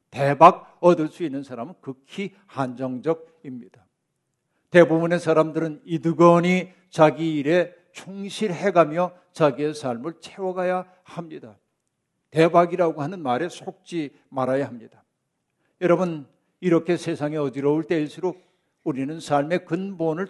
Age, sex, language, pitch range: 60-79, male, Korean, 150-180 Hz